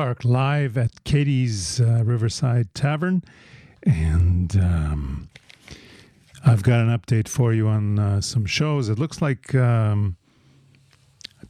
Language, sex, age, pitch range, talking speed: English, male, 50-69, 105-130 Hz, 120 wpm